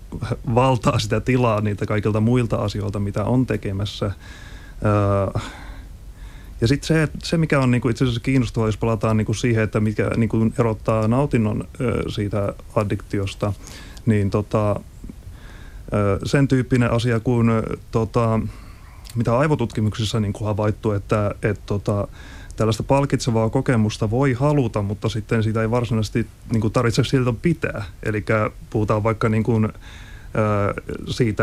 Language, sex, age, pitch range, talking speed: English, male, 30-49, 105-120 Hz, 105 wpm